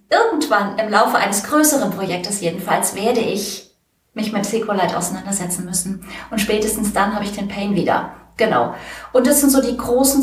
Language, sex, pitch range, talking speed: German, female, 200-250 Hz, 170 wpm